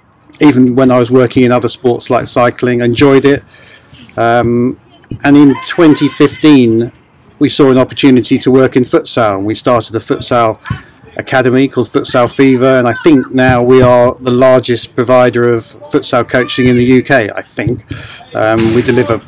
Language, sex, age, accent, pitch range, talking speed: English, male, 40-59, British, 120-135 Hz, 165 wpm